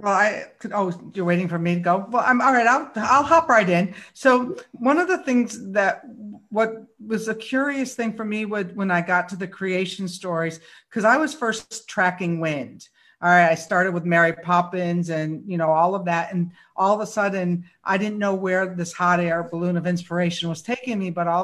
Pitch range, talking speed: 175-220 Hz, 225 wpm